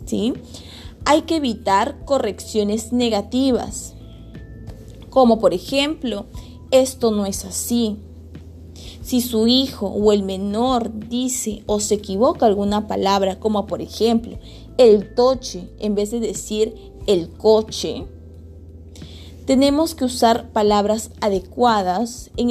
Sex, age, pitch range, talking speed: female, 20-39, 185-245 Hz, 110 wpm